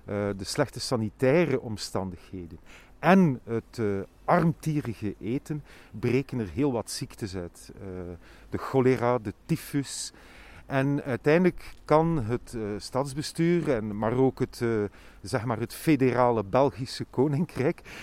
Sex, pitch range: male, 110-150 Hz